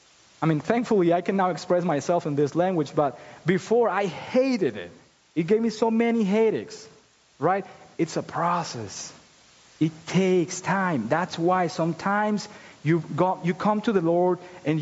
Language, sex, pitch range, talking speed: English, male, 160-205 Hz, 160 wpm